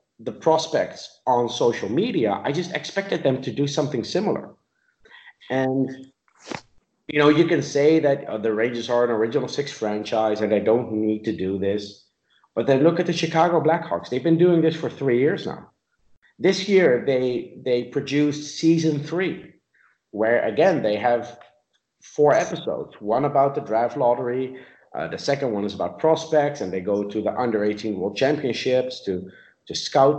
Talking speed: 175 wpm